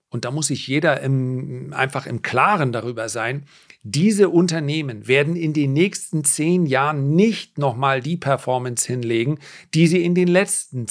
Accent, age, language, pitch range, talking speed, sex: German, 40-59, German, 120-150 Hz, 160 wpm, male